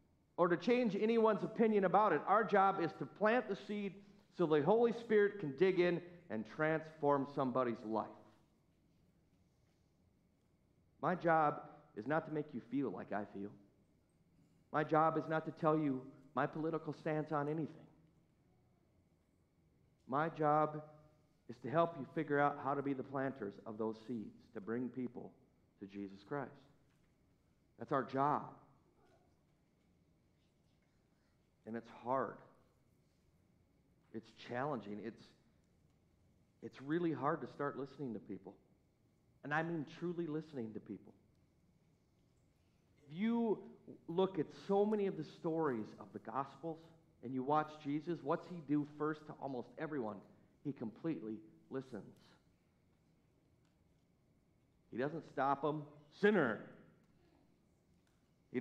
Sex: male